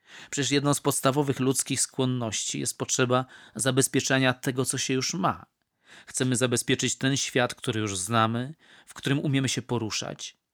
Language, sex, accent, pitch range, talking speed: Polish, male, native, 120-140 Hz, 150 wpm